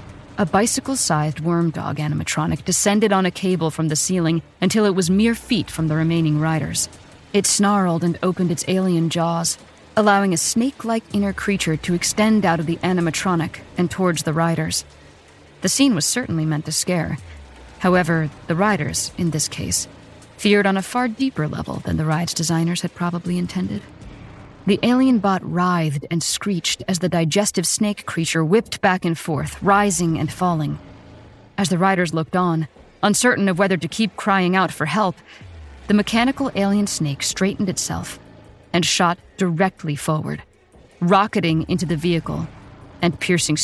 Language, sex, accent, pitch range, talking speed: English, female, American, 155-200 Hz, 160 wpm